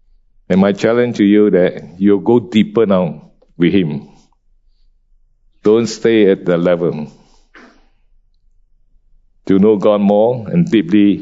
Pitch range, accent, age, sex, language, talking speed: 100-125 Hz, Malaysian, 50-69, male, English, 125 wpm